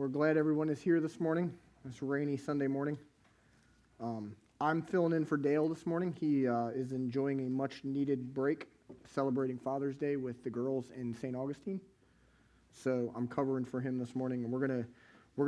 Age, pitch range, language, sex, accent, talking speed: 30-49, 130-165 Hz, English, male, American, 180 wpm